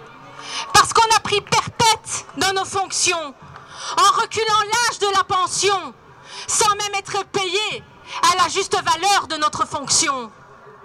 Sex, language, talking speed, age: female, French, 140 wpm, 40-59